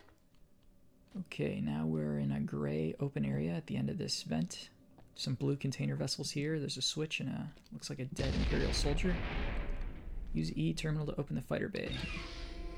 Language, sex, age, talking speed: English, male, 20-39, 175 wpm